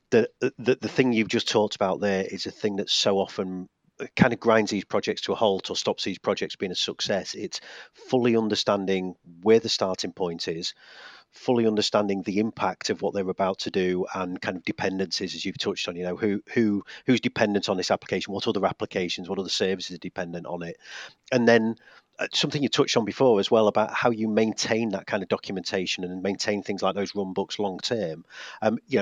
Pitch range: 95-115 Hz